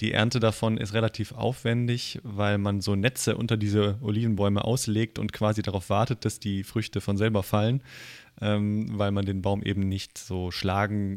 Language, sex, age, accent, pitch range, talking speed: German, male, 20-39, German, 100-115 Hz, 175 wpm